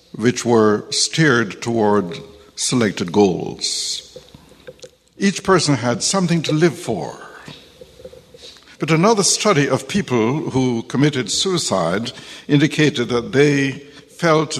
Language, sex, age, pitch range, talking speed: English, male, 60-79, 115-165 Hz, 105 wpm